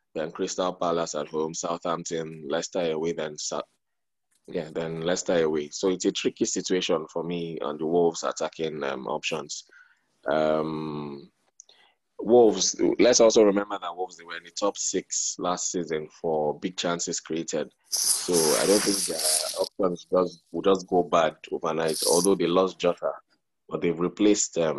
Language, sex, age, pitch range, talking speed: English, male, 20-39, 80-95 Hz, 155 wpm